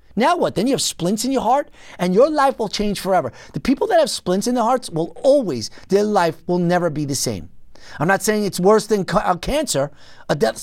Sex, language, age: male, English, 40-59